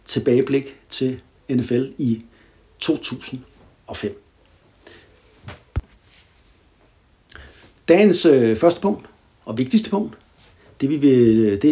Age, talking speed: 60-79, 80 wpm